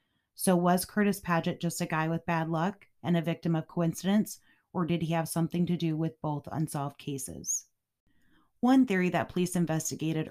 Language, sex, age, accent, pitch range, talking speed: English, female, 30-49, American, 150-175 Hz, 180 wpm